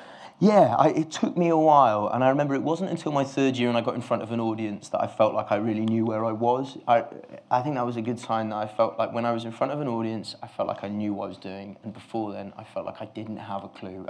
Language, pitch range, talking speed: English, 100-120 Hz, 315 wpm